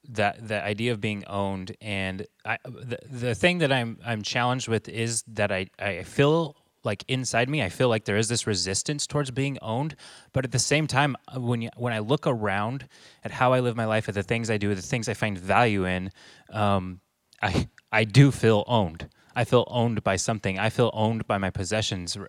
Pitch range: 100-120 Hz